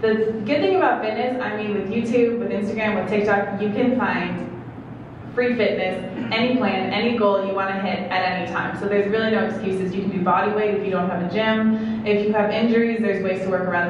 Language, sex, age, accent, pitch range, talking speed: English, female, 20-39, American, 175-215 Hz, 230 wpm